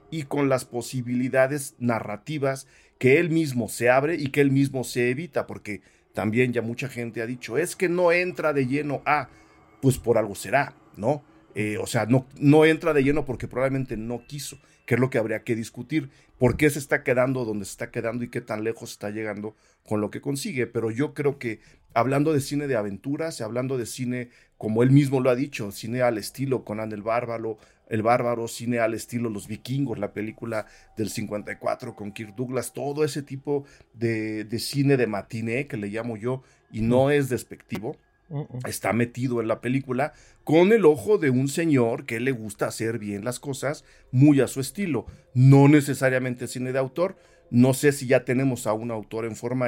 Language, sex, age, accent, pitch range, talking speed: Spanish, male, 40-59, Mexican, 110-140 Hz, 200 wpm